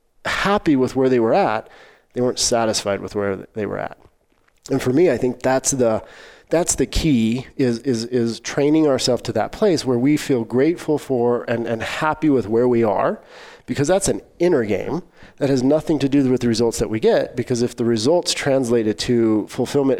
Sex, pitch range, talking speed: male, 115-155 Hz, 200 wpm